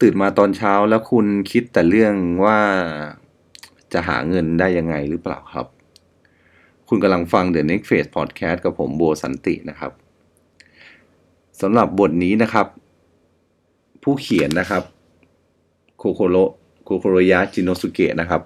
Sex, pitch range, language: male, 80-95 Hz, Thai